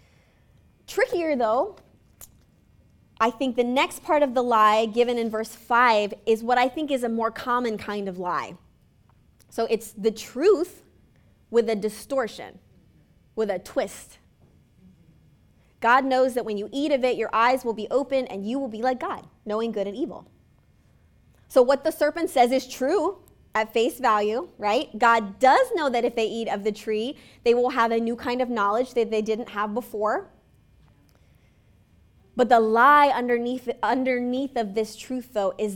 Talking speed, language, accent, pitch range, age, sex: 170 wpm, English, American, 215-260 Hz, 20-39, female